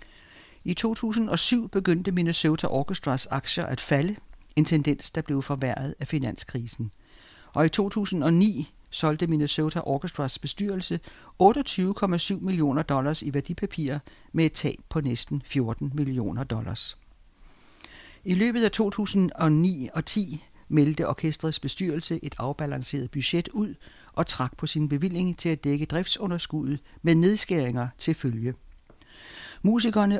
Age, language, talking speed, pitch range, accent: 60-79, Danish, 125 wpm, 140-175 Hz, native